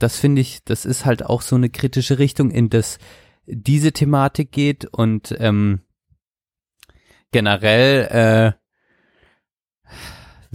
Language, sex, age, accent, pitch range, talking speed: German, male, 30-49, German, 105-130 Hz, 115 wpm